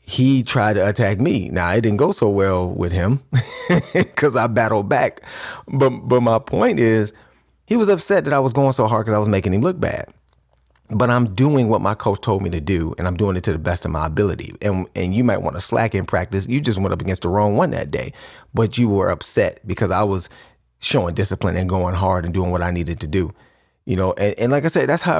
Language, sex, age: English, male, 30-49